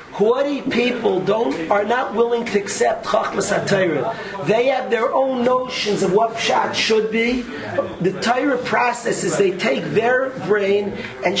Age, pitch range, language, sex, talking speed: 40-59, 195-235 Hz, English, male, 145 wpm